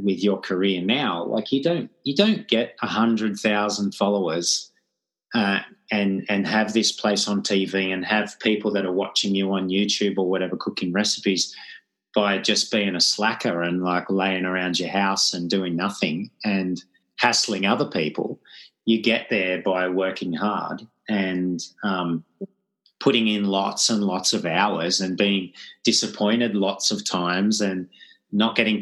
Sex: male